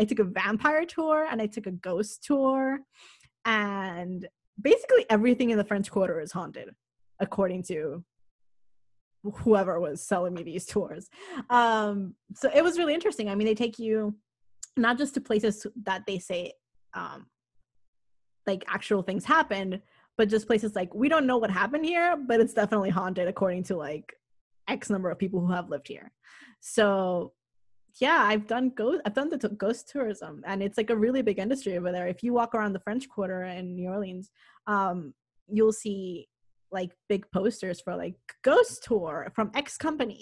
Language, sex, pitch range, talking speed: English, female, 180-235 Hz, 180 wpm